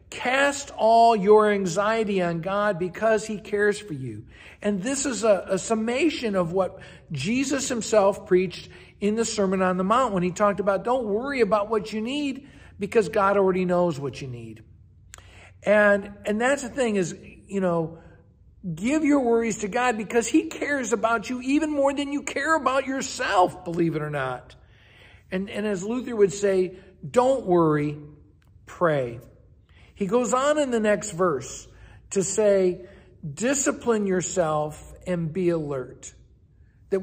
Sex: male